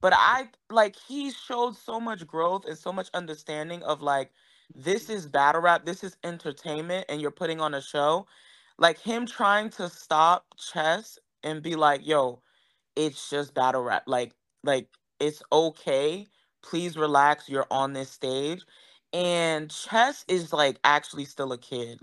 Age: 20-39